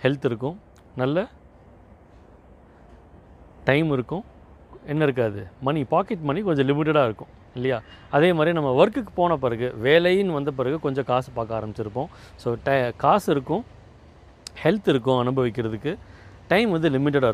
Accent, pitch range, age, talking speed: native, 120-155 Hz, 30-49, 130 wpm